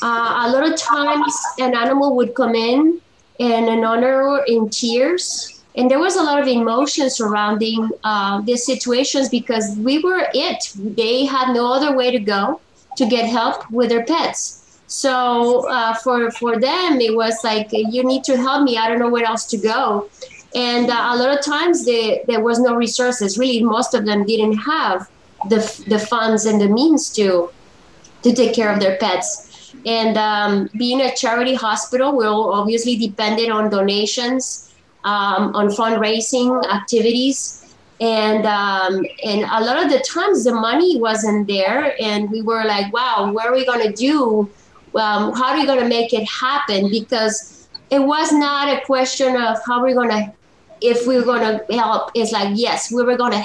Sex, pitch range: female, 220-260 Hz